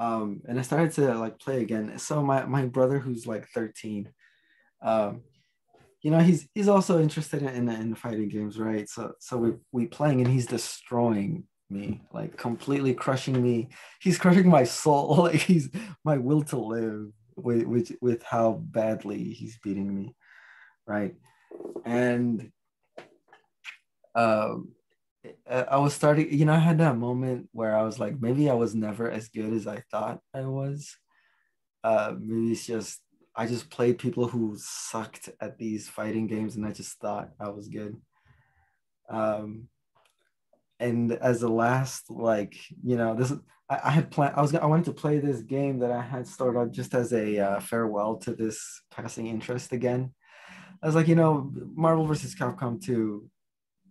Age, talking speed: 20-39, 170 wpm